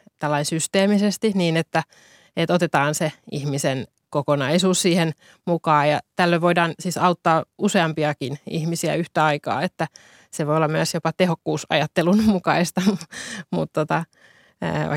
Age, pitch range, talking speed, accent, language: 20-39, 150-175 Hz, 115 wpm, native, Finnish